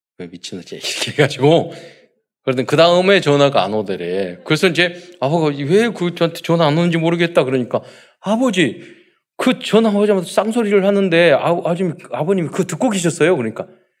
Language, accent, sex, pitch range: Korean, native, male, 130-190 Hz